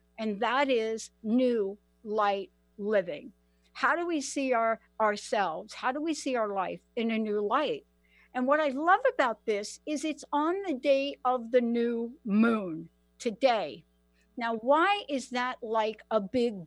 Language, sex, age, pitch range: English, female, 60-79, 200-270 Hz